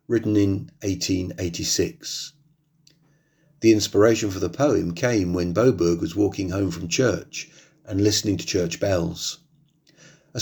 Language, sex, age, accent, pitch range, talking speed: English, male, 40-59, British, 95-150 Hz, 125 wpm